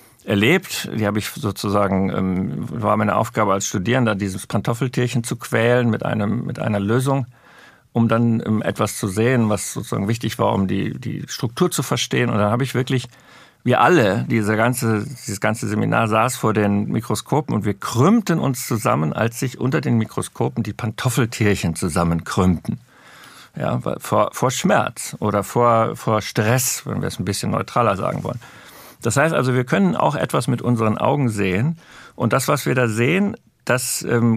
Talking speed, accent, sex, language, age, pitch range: 165 wpm, German, male, German, 50-69, 110-130 Hz